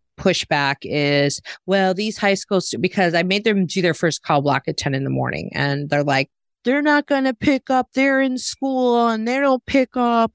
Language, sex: English, female